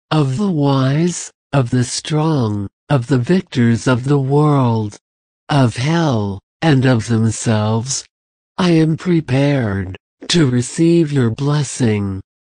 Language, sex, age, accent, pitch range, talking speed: English, male, 60-79, American, 110-155 Hz, 115 wpm